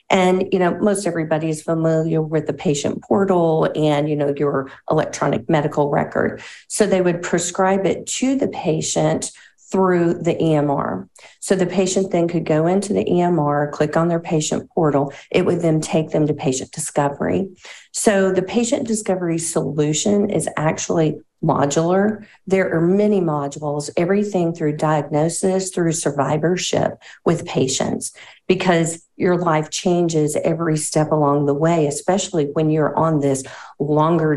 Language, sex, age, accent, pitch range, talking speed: English, female, 40-59, American, 155-185 Hz, 150 wpm